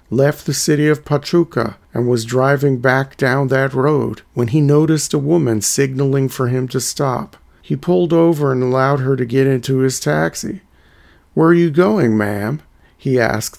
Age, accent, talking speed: 40-59, American, 175 wpm